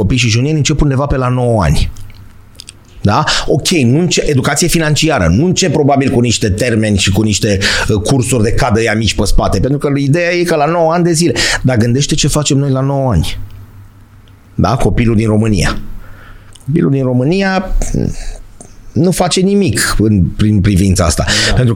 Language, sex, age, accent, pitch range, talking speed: Romanian, male, 30-49, native, 100-140 Hz, 170 wpm